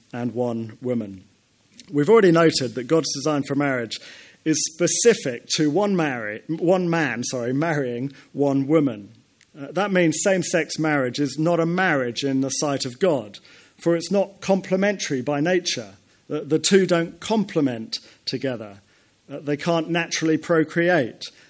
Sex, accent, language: male, British, English